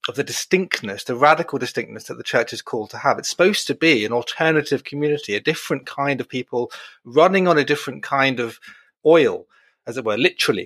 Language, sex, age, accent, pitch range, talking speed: English, male, 30-49, British, 125-160 Hz, 205 wpm